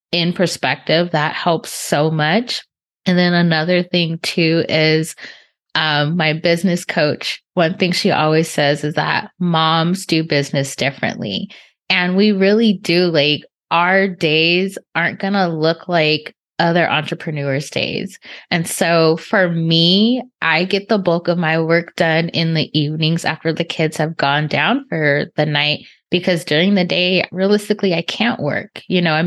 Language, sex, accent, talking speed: English, female, American, 160 wpm